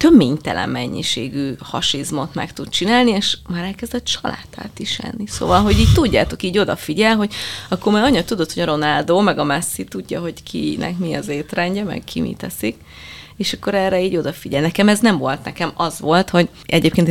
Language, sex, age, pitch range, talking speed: Hungarian, female, 30-49, 155-210 Hz, 180 wpm